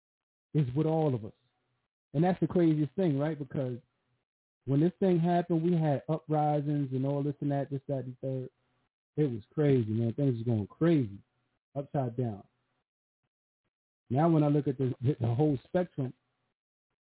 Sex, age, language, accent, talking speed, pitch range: male, 40-59, English, American, 165 wpm, 125-175 Hz